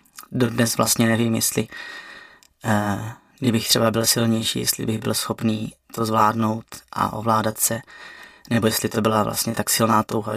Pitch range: 105-110 Hz